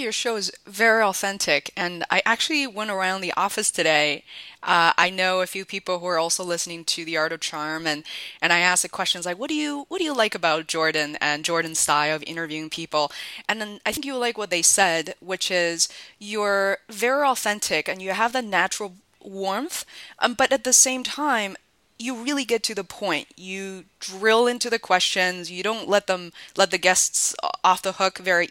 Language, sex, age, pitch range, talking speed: English, female, 20-39, 180-230 Hz, 205 wpm